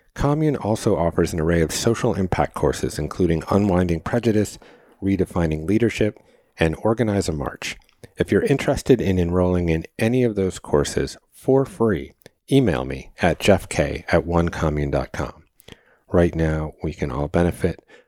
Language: English